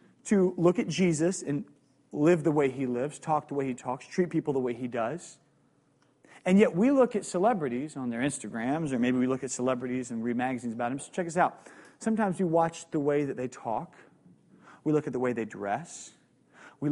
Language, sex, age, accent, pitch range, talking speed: English, male, 30-49, American, 130-185 Hz, 215 wpm